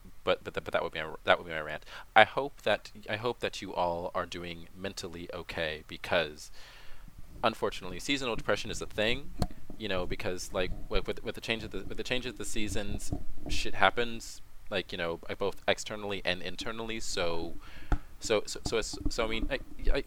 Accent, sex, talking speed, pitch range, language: American, male, 205 wpm, 85-110 Hz, English